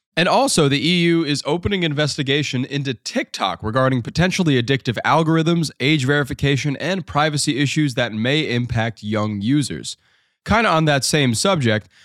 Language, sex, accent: English, male, American